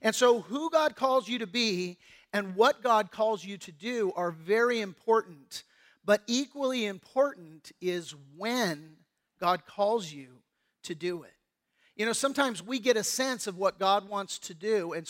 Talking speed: 170 wpm